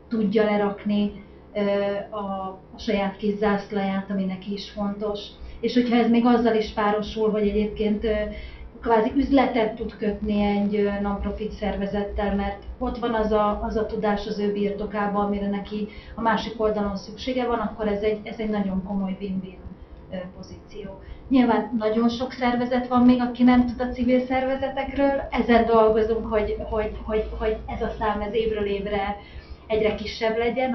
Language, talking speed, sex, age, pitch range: Hungarian, 155 wpm, female, 30-49, 205-230 Hz